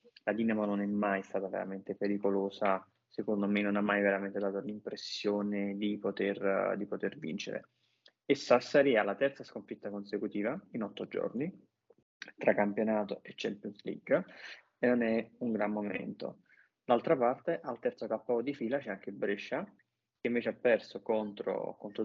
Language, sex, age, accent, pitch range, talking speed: Italian, male, 20-39, native, 105-115 Hz, 155 wpm